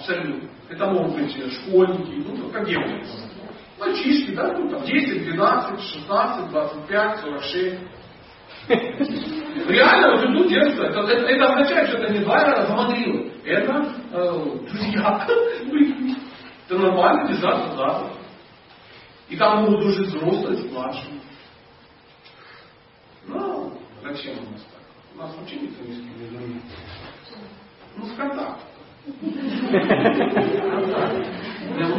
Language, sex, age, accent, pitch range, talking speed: Russian, male, 40-59, native, 180-275 Hz, 105 wpm